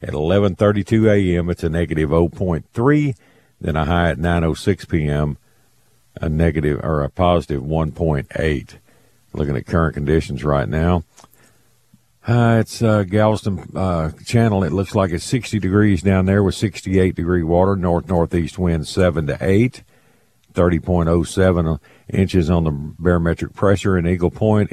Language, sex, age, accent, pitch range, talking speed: English, male, 50-69, American, 75-95 Hz, 140 wpm